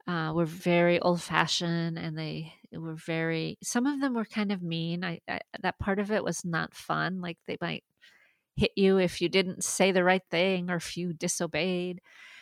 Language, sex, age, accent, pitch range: Chinese, female, 40-59, American, 170-200 Hz